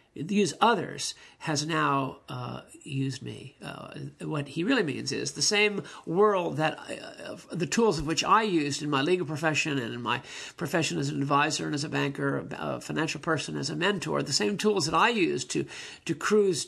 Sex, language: male, English